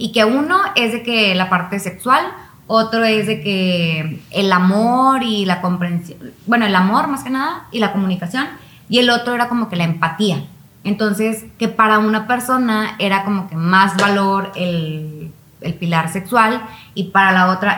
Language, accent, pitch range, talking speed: Spanish, Mexican, 185-240 Hz, 180 wpm